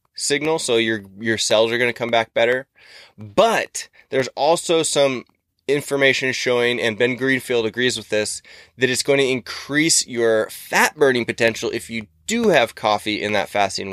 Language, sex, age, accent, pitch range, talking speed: English, male, 20-39, American, 110-135 Hz, 170 wpm